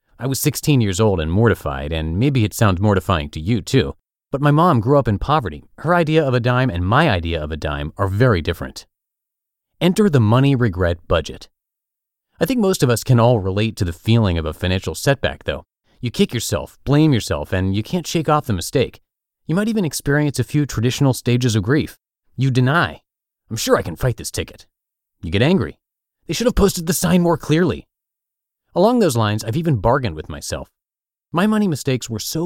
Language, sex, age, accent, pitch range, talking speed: English, male, 30-49, American, 100-145 Hz, 205 wpm